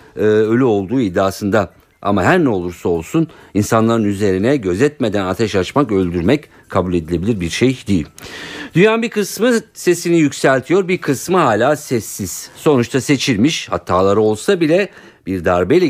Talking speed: 130 wpm